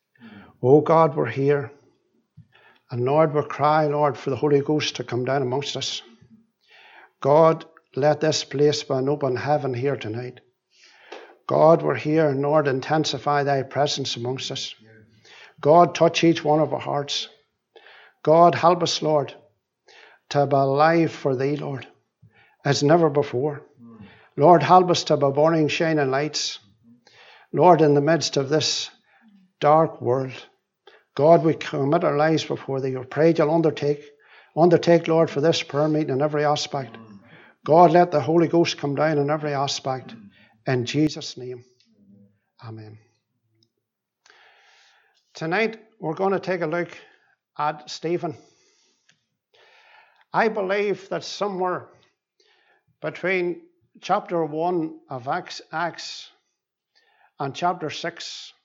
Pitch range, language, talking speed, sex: 135-170 Hz, English, 135 wpm, male